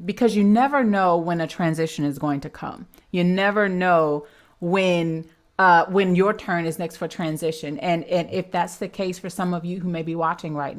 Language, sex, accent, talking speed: English, female, American, 210 wpm